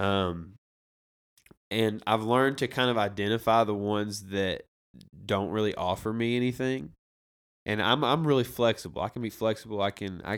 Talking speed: 160 wpm